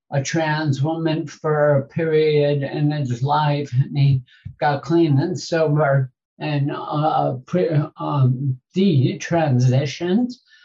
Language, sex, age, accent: English, male, 60-79, American